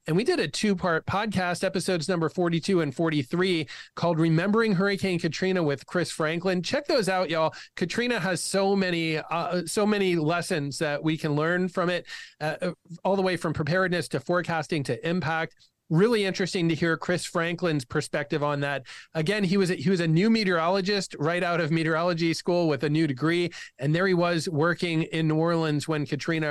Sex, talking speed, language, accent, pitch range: male, 190 wpm, English, American, 155-180 Hz